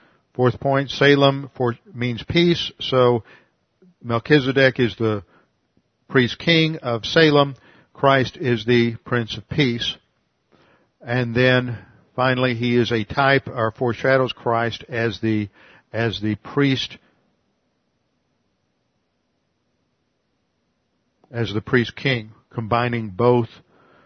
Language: English